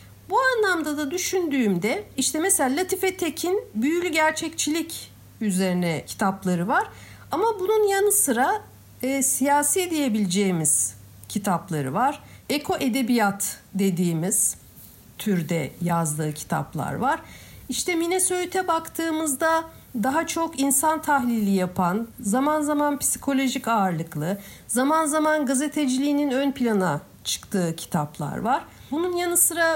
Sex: female